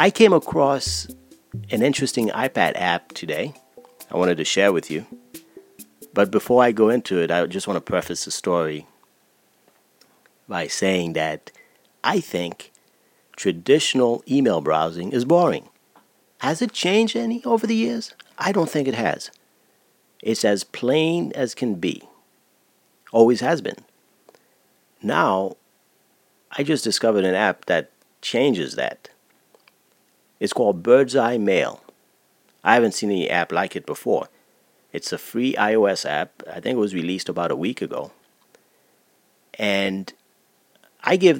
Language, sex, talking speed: English, male, 140 wpm